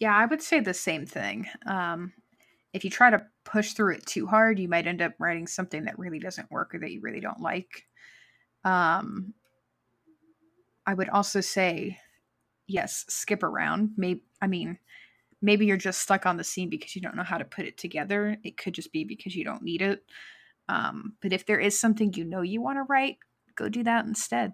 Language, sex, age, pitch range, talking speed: English, female, 20-39, 180-215 Hz, 210 wpm